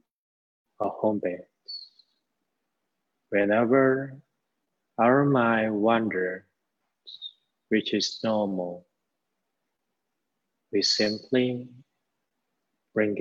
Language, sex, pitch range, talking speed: English, male, 100-115 Hz, 60 wpm